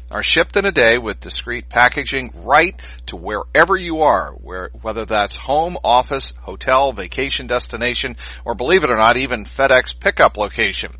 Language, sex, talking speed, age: English, male, 160 wpm, 50-69